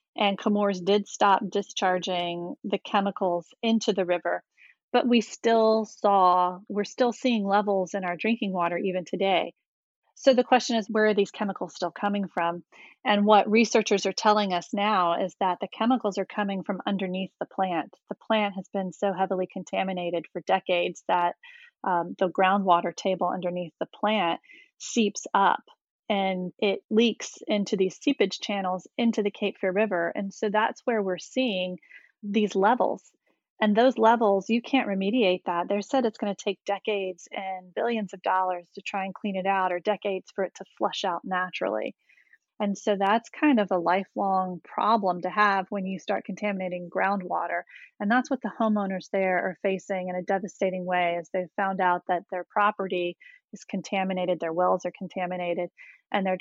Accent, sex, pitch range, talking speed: American, female, 185-210 Hz, 175 wpm